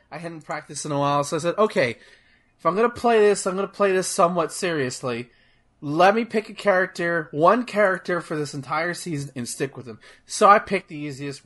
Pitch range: 135-195 Hz